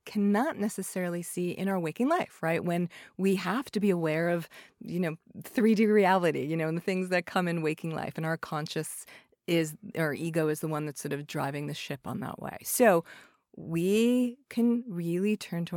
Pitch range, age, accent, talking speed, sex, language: 175-230 Hz, 30-49, American, 200 wpm, female, English